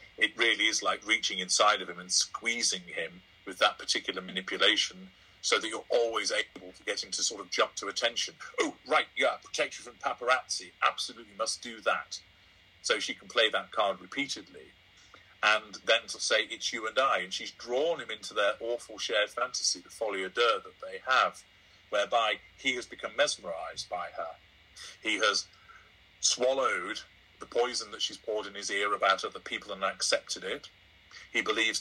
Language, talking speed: English, 180 wpm